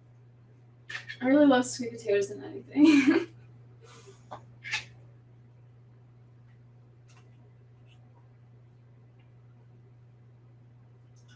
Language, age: English, 20-39